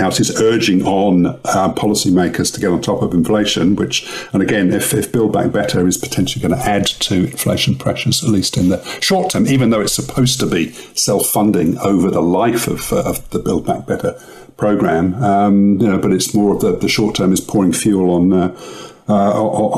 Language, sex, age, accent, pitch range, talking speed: English, male, 50-69, British, 90-105 Hz, 210 wpm